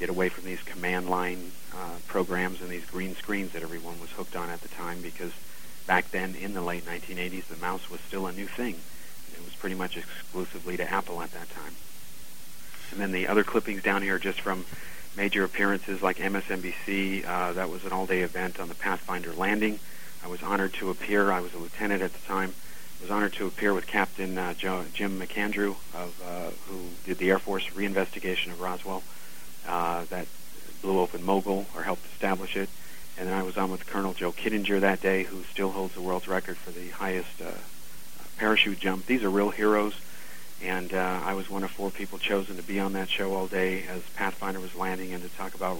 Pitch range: 90-95 Hz